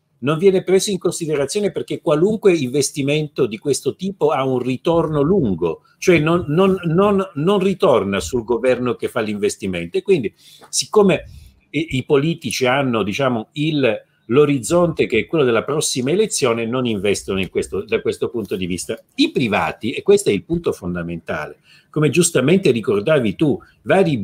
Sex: male